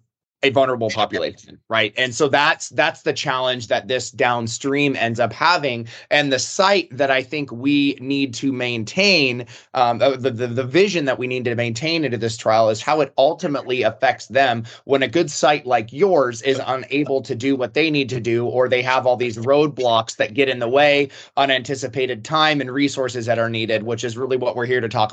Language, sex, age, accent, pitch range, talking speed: English, male, 30-49, American, 120-145 Hz, 205 wpm